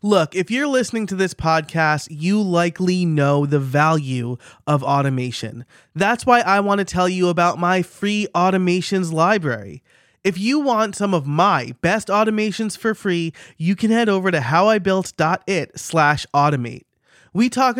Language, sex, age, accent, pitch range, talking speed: English, male, 20-39, American, 155-210 Hz, 155 wpm